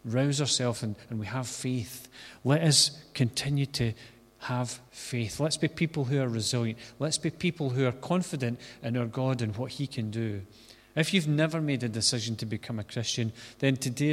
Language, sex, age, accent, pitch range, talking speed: English, male, 40-59, British, 115-145 Hz, 185 wpm